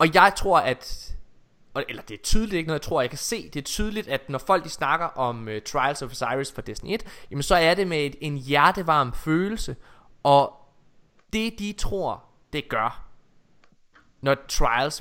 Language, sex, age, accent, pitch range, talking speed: Danish, male, 20-39, native, 135-195 Hz, 190 wpm